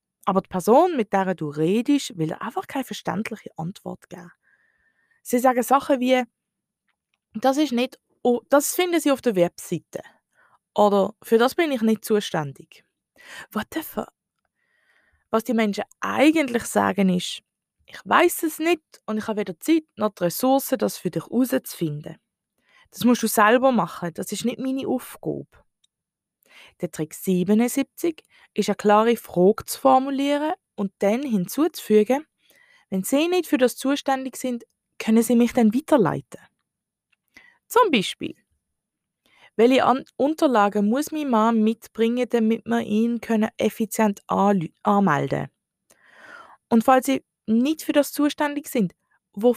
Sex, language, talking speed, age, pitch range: female, German, 140 wpm, 20-39, 205-270 Hz